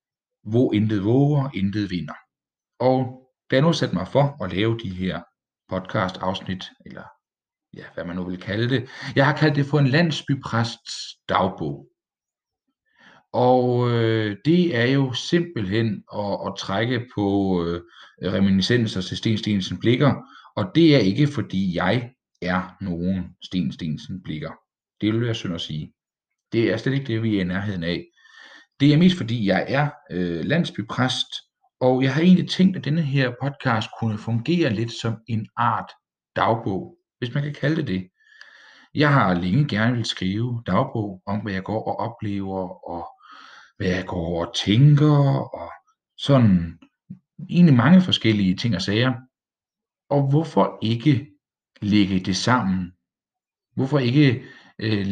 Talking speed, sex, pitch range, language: 155 wpm, male, 100-140 Hz, Danish